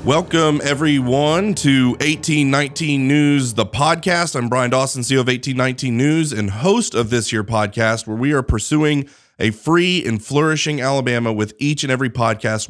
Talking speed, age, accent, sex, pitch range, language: 160 wpm, 30-49, American, male, 115-140 Hz, English